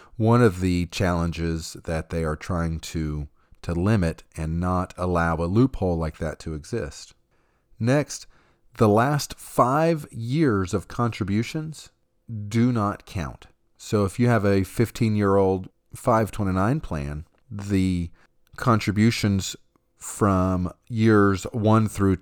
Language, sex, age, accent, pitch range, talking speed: English, male, 40-59, American, 85-115 Hz, 125 wpm